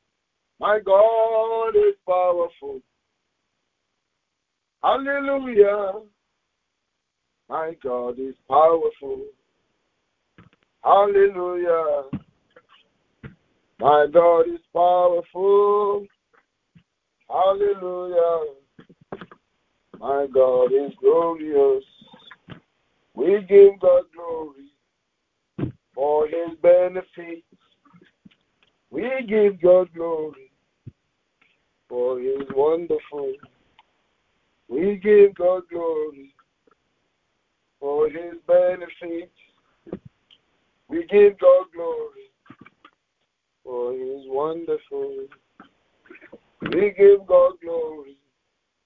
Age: 60-79